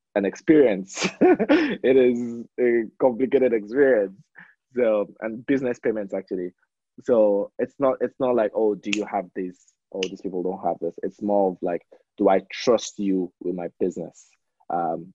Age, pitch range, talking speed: 20-39, 95-145 Hz, 160 wpm